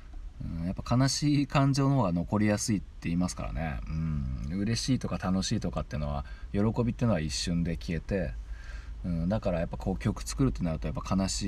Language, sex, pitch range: Japanese, male, 70-100 Hz